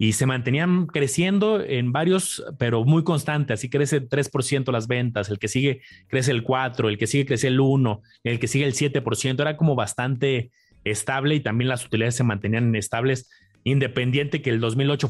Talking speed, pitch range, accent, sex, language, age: 185 wpm, 120-150 Hz, Mexican, male, Spanish, 30-49